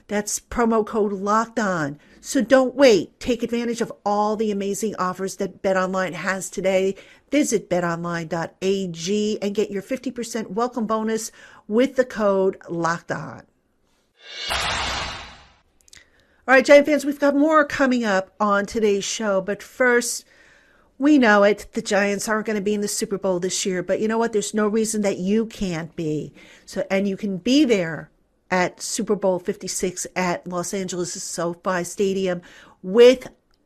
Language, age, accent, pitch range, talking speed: English, 50-69, American, 185-225 Hz, 155 wpm